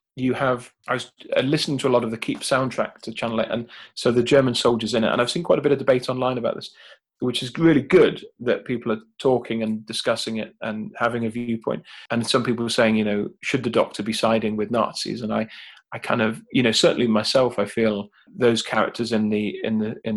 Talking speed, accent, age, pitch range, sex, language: 240 wpm, British, 30-49, 110-125 Hz, male, English